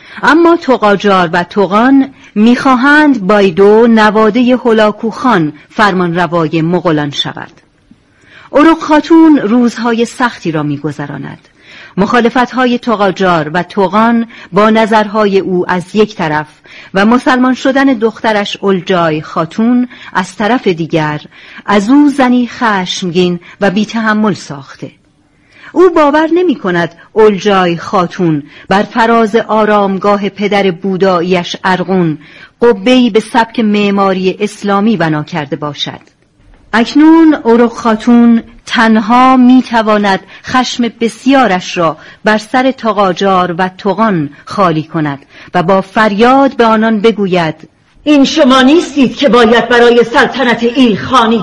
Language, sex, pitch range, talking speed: Persian, female, 185-245 Hz, 110 wpm